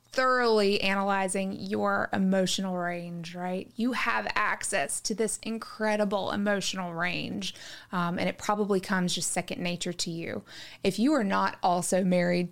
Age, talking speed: 20-39, 145 wpm